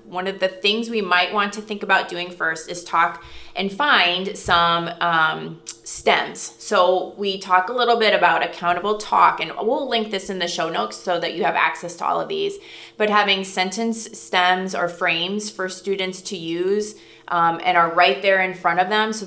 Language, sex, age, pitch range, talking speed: English, female, 20-39, 175-210 Hz, 200 wpm